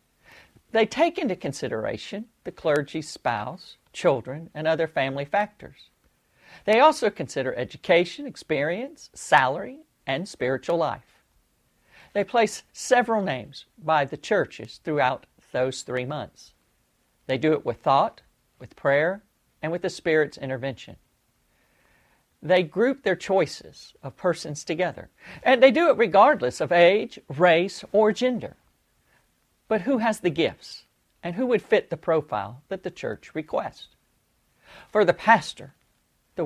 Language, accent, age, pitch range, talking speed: English, American, 50-69, 155-215 Hz, 130 wpm